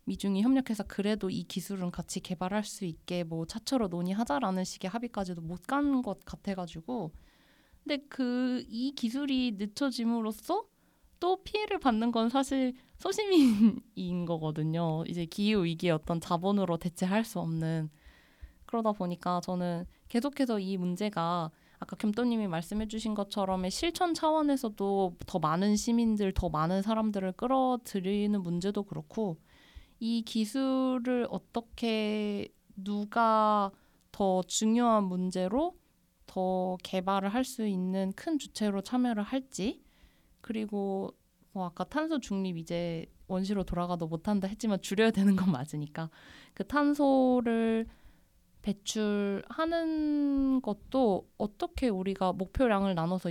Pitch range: 185-245 Hz